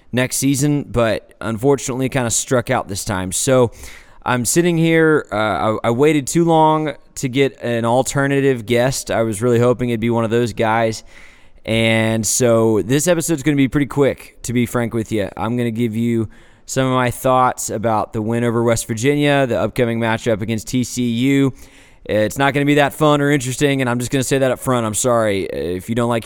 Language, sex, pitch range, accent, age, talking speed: English, male, 115-135 Hz, American, 20-39, 210 wpm